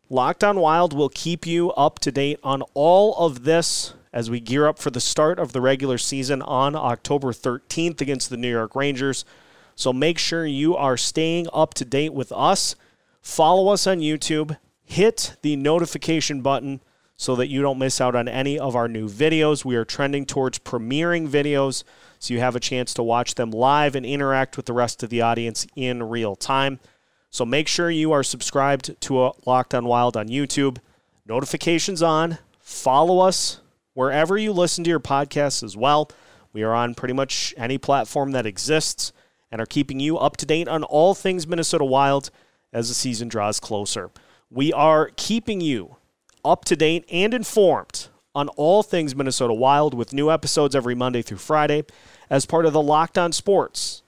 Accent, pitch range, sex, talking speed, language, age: American, 125-155 Hz, male, 185 wpm, English, 30-49